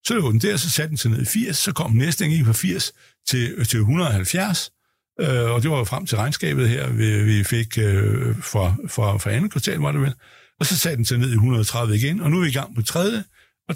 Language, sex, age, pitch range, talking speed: Danish, male, 60-79, 115-160 Hz, 260 wpm